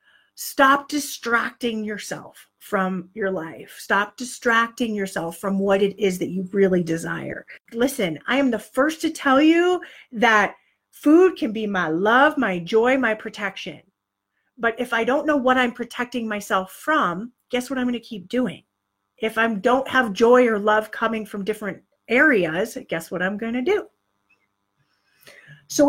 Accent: American